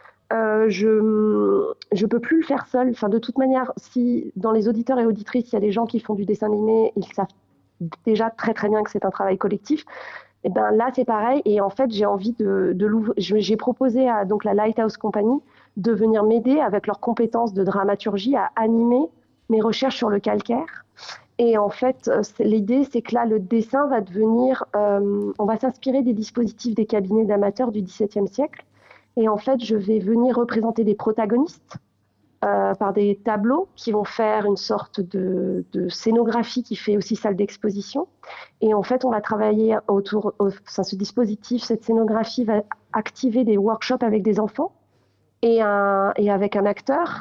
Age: 30-49